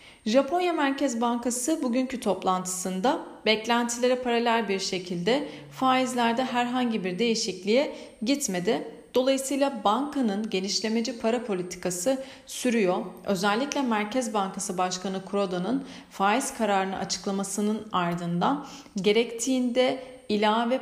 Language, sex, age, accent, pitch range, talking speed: Turkish, female, 40-59, native, 195-250 Hz, 90 wpm